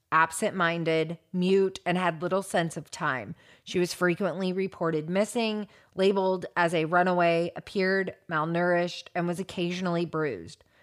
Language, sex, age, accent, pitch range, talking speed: English, female, 30-49, American, 170-195 Hz, 125 wpm